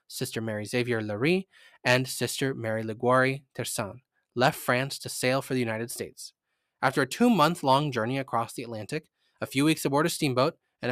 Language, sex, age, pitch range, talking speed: English, male, 20-39, 120-160 Hz, 170 wpm